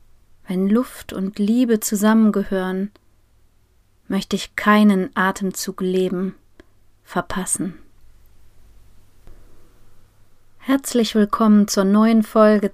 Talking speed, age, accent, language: 75 wpm, 30-49, German, German